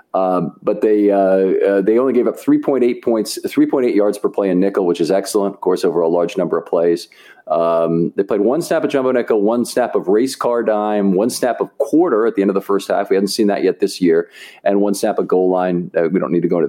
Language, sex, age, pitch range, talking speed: English, male, 40-59, 95-125 Hz, 275 wpm